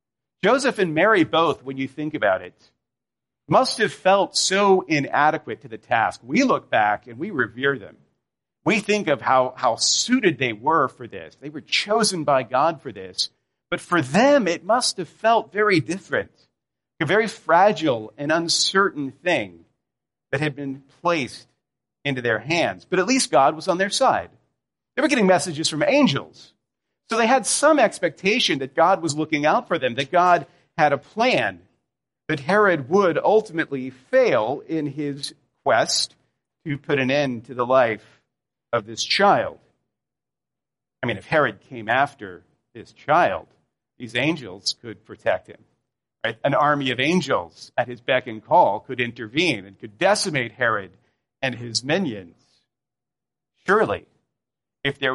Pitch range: 130-190 Hz